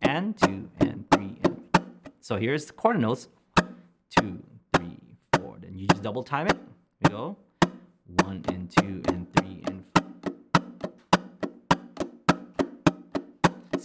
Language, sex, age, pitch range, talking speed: English, male, 30-49, 95-125 Hz, 125 wpm